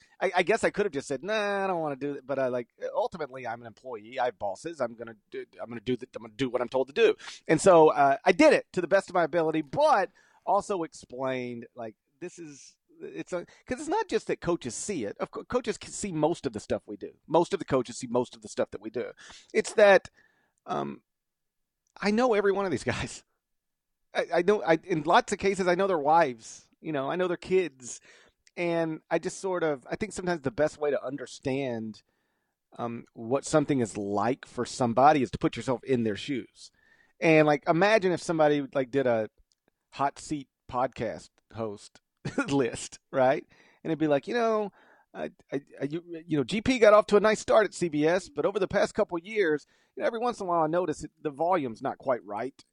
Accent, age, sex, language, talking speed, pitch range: American, 40-59, male, English, 230 wpm, 135-200 Hz